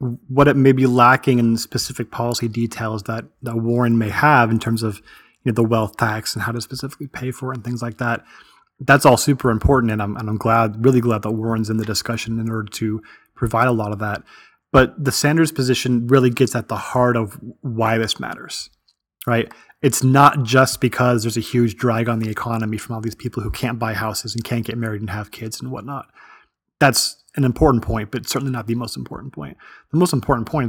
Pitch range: 115-130 Hz